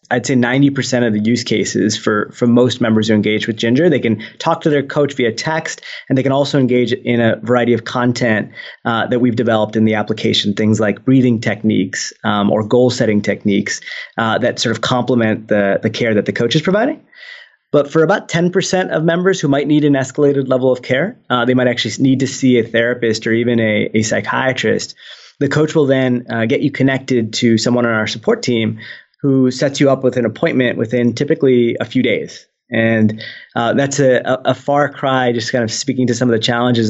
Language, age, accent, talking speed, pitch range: English, 20-39, American, 215 wpm, 110-130 Hz